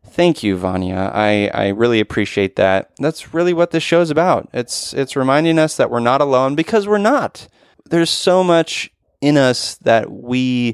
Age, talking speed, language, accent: 20-39, 185 wpm, English, American